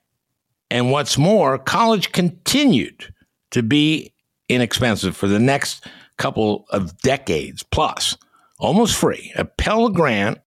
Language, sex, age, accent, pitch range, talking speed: English, male, 60-79, American, 95-135 Hz, 115 wpm